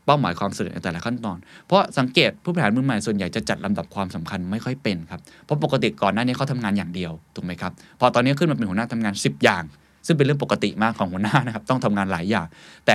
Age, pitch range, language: 20-39, 100-140 Hz, Thai